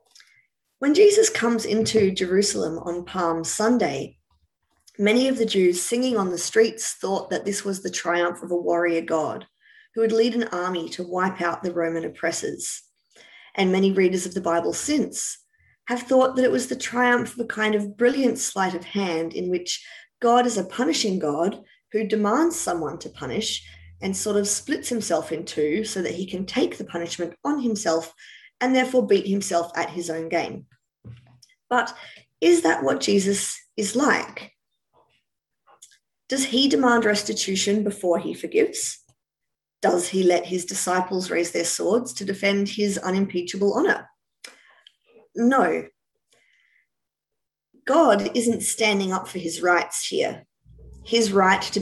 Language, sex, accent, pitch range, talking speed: English, female, Australian, 175-230 Hz, 155 wpm